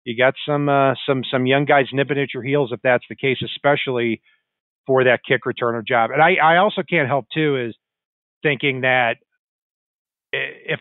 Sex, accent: male, American